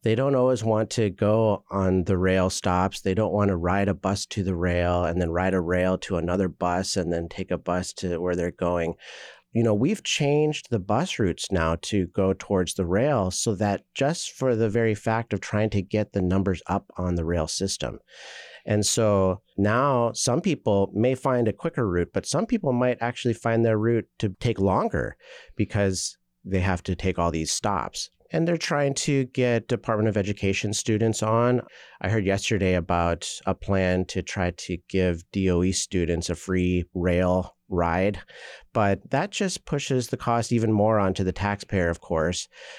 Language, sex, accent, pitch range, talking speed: English, male, American, 90-115 Hz, 190 wpm